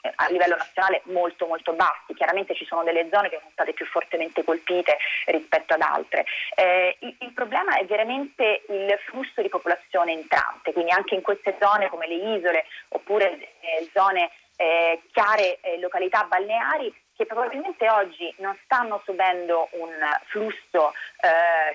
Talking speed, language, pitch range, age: 155 wpm, Italian, 175-230 Hz, 30-49